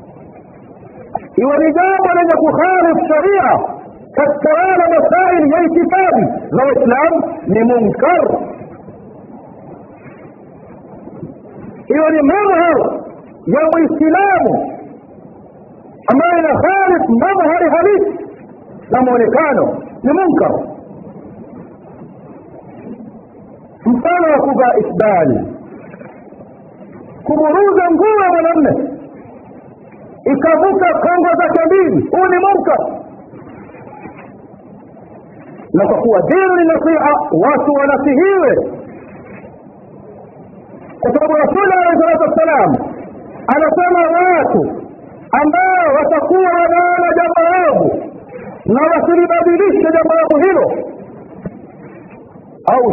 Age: 50-69